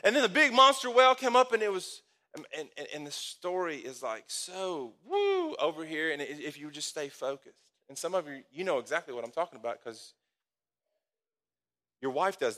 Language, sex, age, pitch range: English, male, 30-49, 170-230 Hz